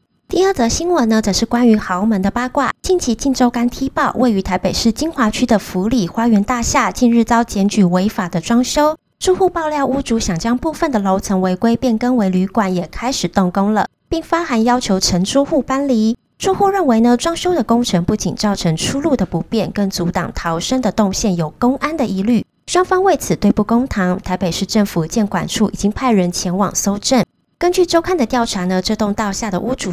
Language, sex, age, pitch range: Chinese, female, 20-39, 195-255 Hz